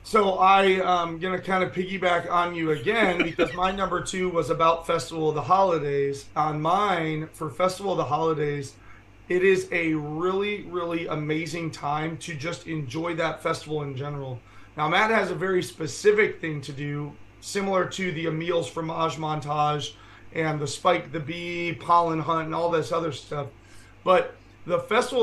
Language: English